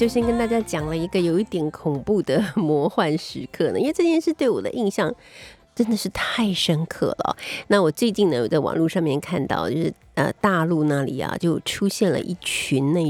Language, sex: Chinese, female